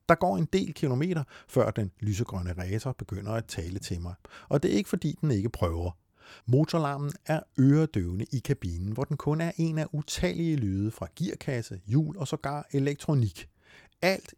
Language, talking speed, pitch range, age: Danish, 175 wpm, 100-150 Hz, 50-69